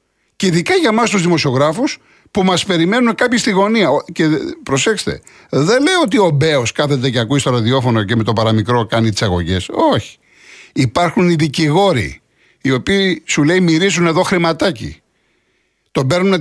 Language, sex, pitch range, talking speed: Greek, male, 135-200 Hz, 160 wpm